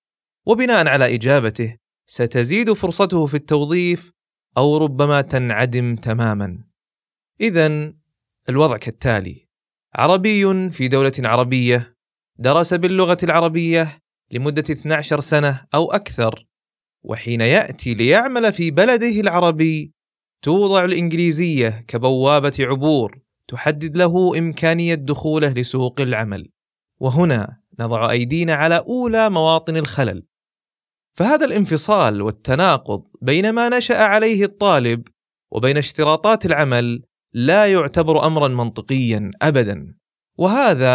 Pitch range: 120-175 Hz